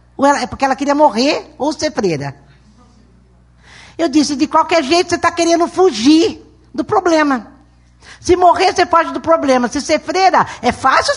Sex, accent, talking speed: female, Brazilian, 160 wpm